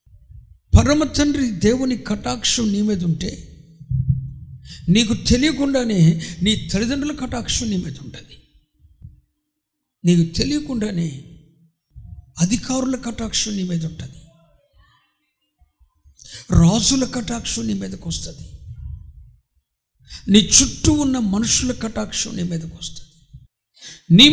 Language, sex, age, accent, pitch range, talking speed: Telugu, male, 60-79, native, 160-250 Hz, 85 wpm